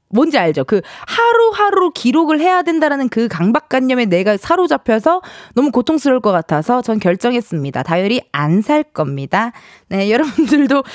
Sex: female